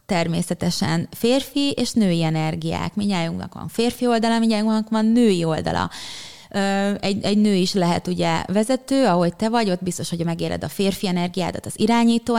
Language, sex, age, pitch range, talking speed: Hungarian, female, 20-39, 170-215 Hz, 155 wpm